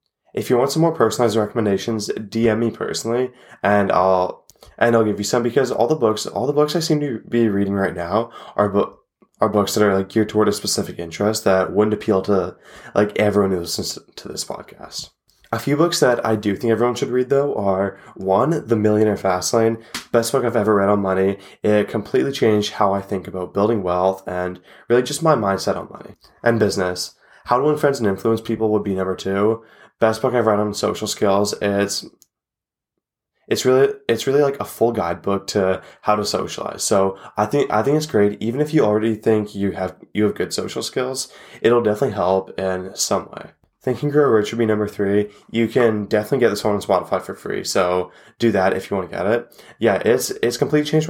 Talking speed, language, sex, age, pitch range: 215 wpm, English, male, 20-39, 100-115 Hz